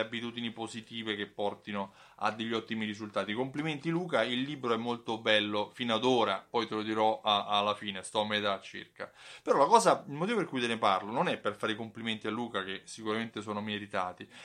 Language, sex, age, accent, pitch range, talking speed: Italian, male, 30-49, native, 110-165 Hz, 210 wpm